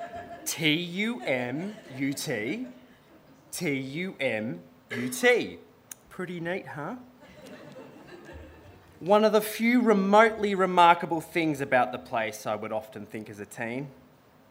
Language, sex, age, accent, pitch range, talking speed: English, male, 20-39, Australian, 115-185 Hz, 90 wpm